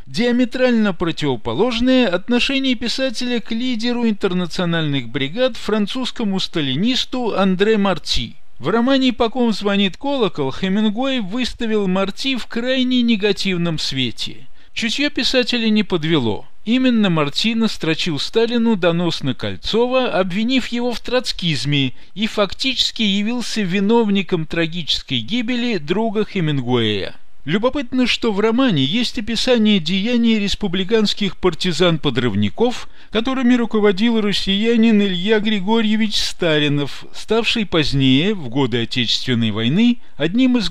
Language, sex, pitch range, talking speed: Russian, male, 175-240 Hz, 105 wpm